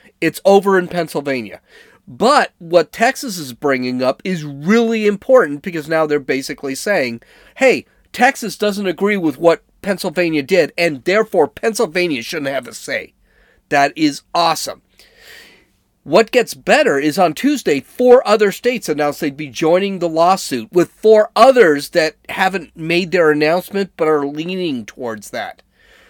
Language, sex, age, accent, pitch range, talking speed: English, male, 30-49, American, 160-240 Hz, 145 wpm